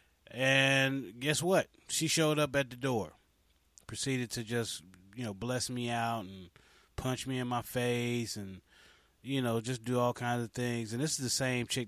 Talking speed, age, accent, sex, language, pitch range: 190 wpm, 20-39, American, male, English, 105-140 Hz